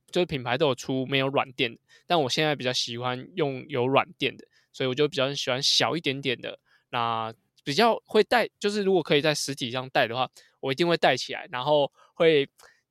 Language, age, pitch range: Chinese, 20-39, 125-160 Hz